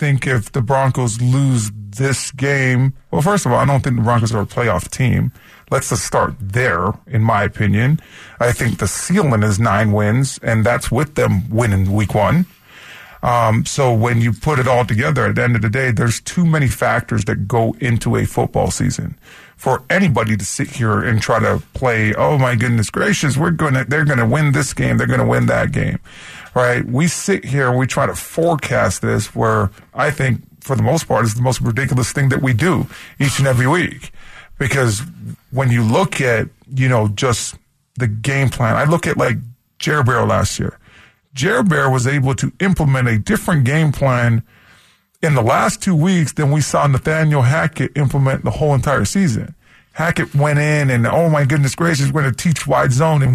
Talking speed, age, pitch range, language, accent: 205 wpm, 30-49, 115-145 Hz, English, American